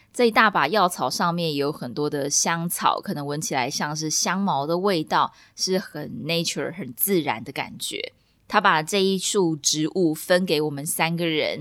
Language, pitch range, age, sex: Chinese, 165-205 Hz, 20-39, female